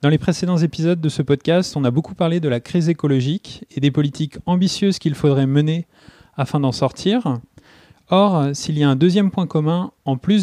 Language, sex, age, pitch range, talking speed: French, male, 30-49, 140-175 Hz, 200 wpm